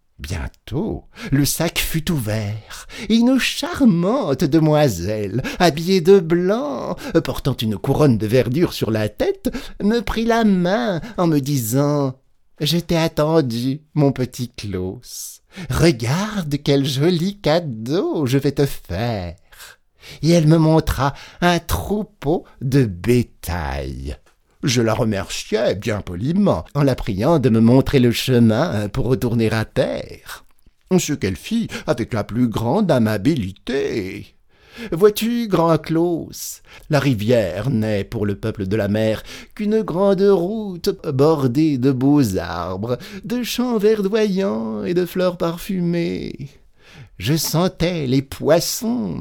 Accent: French